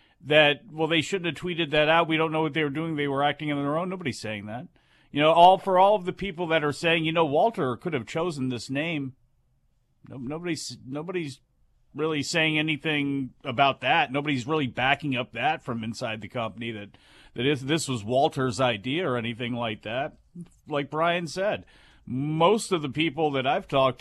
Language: English